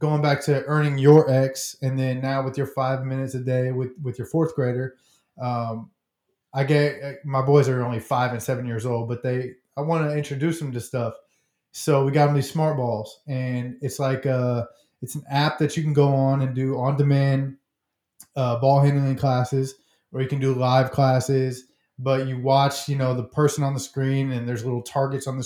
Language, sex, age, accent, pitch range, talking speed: English, male, 20-39, American, 125-145 Hz, 210 wpm